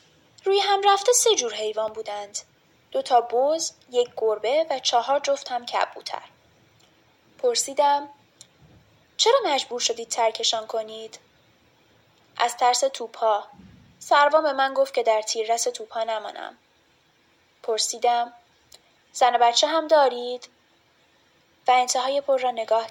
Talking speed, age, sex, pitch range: 115 wpm, 10-29, female, 225-285 Hz